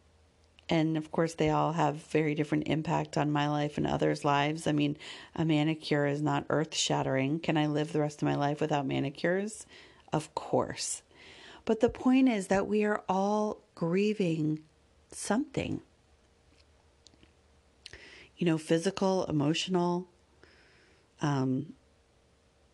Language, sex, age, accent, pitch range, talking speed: English, female, 40-59, American, 150-175 Hz, 130 wpm